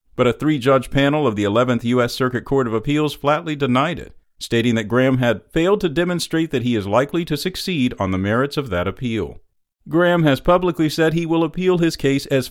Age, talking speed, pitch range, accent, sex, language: 50-69, 210 wpm, 120-155 Hz, American, male, English